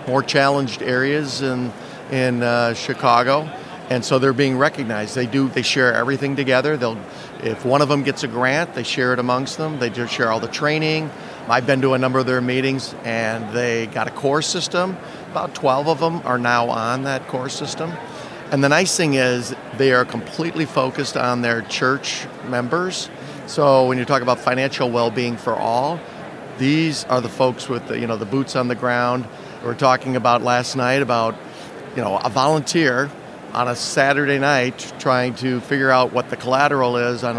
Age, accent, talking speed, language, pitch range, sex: 50-69, American, 195 wpm, English, 120-145 Hz, male